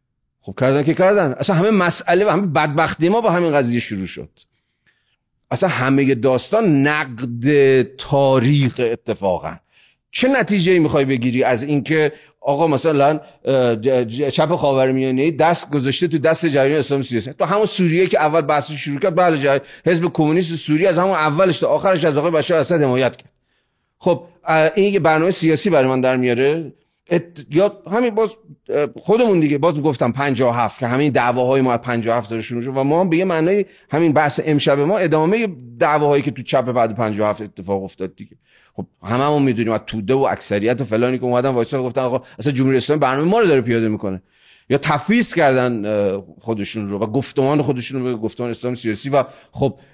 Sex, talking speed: male, 180 wpm